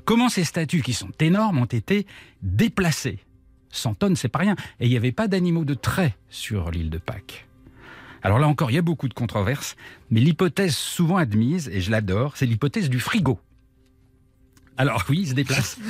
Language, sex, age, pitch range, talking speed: French, male, 50-69, 125-190 Hz, 195 wpm